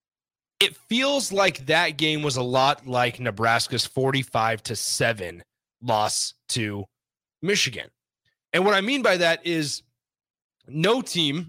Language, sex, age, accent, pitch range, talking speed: English, male, 30-49, American, 125-170 Hz, 130 wpm